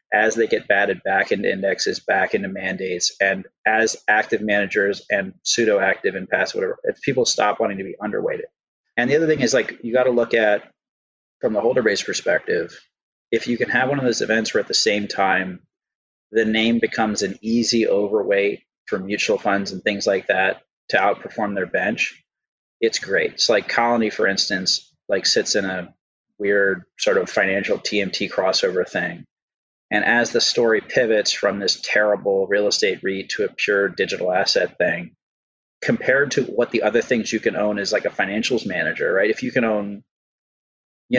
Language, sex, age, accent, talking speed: English, male, 30-49, American, 185 wpm